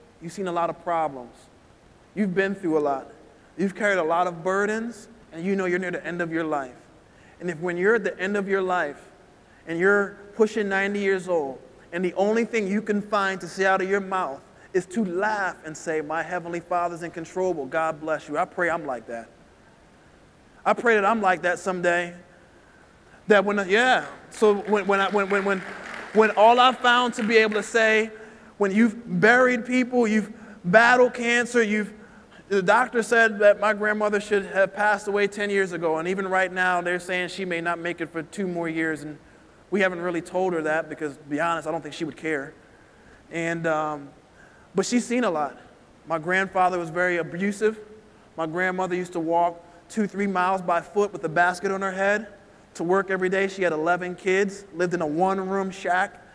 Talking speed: 210 wpm